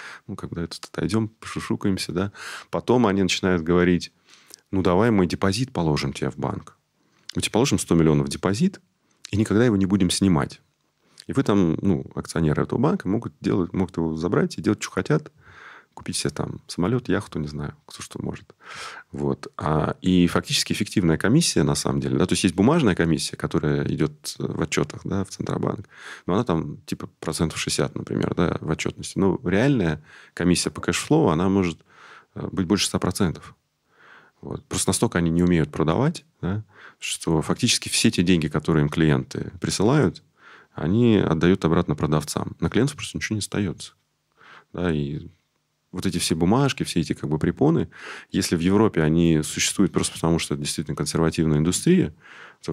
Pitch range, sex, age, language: 80-100 Hz, male, 30-49, English